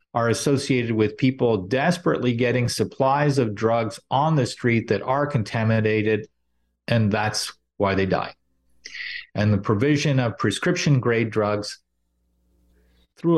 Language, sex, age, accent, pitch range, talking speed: English, male, 40-59, American, 95-130 Hz, 120 wpm